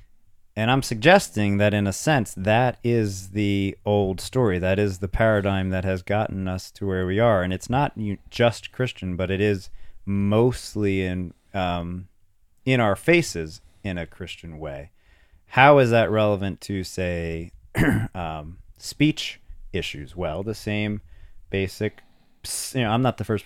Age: 30-49